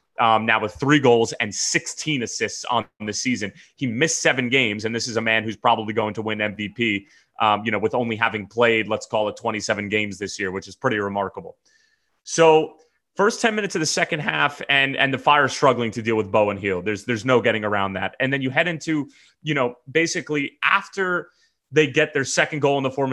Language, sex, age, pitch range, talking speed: English, male, 30-49, 110-145 Hz, 225 wpm